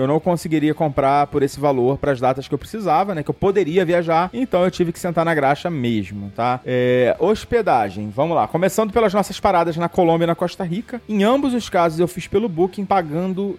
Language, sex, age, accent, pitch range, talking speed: Portuguese, male, 30-49, Brazilian, 145-195 Hz, 220 wpm